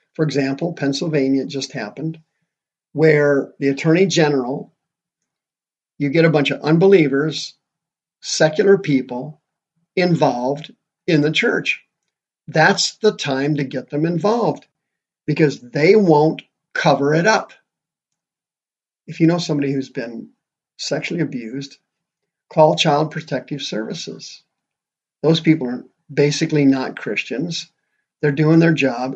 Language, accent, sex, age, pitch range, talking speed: English, American, male, 50-69, 140-175 Hz, 115 wpm